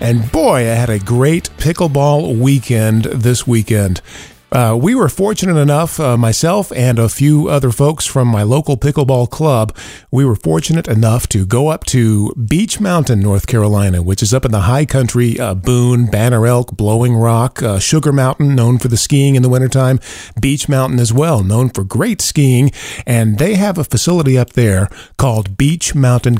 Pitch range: 115-145 Hz